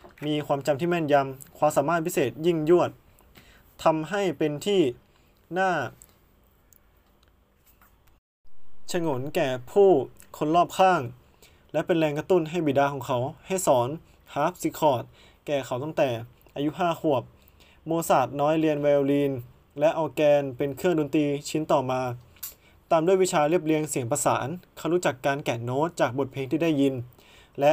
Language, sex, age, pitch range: Thai, male, 20-39, 130-160 Hz